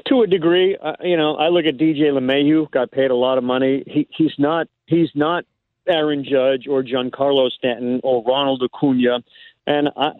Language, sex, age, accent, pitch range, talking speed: English, male, 50-69, American, 140-180 Hz, 195 wpm